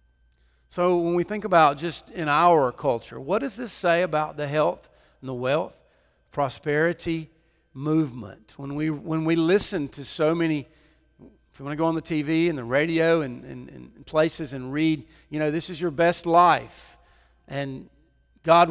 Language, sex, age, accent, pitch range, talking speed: English, male, 50-69, American, 145-175 Hz, 175 wpm